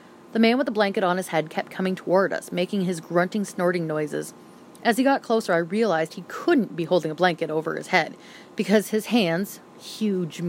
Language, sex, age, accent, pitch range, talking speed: English, female, 30-49, American, 175-230 Hz, 205 wpm